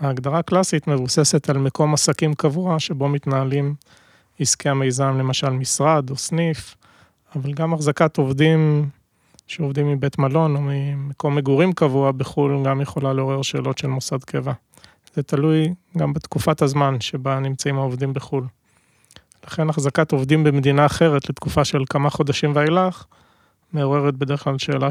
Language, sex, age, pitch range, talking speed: Hebrew, male, 30-49, 135-155 Hz, 135 wpm